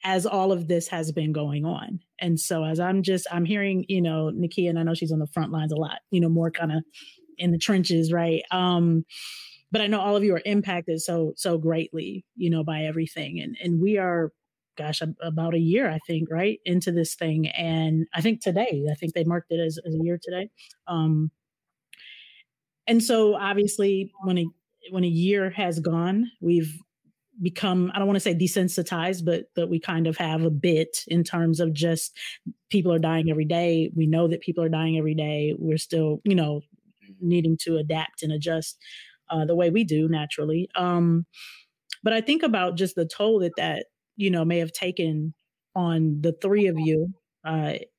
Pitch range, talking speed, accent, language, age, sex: 160-190 Hz, 200 wpm, American, English, 30-49, female